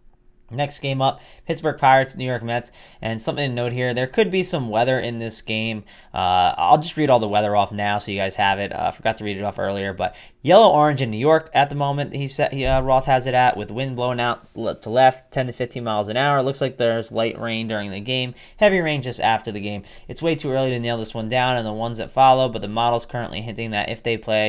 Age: 20-39